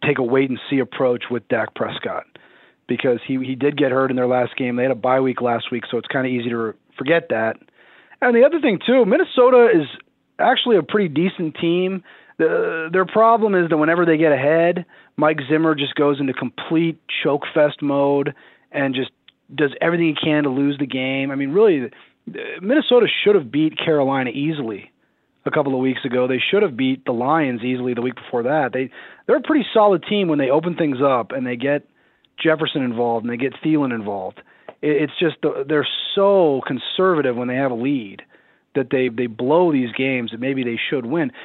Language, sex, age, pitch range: English, male, 30-49, 130-170 Hz